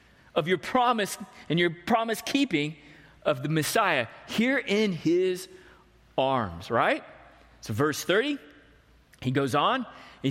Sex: male